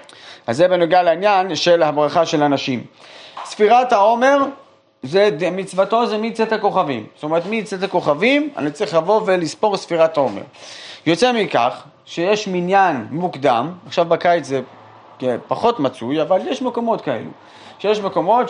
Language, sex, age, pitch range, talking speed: Hebrew, male, 30-49, 160-215 Hz, 135 wpm